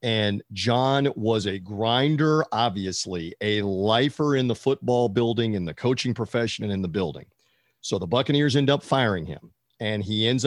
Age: 50-69